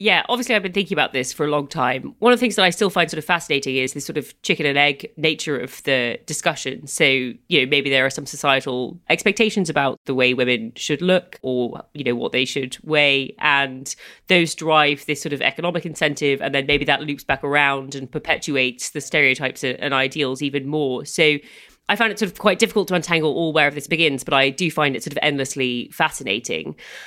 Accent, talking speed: British, 225 wpm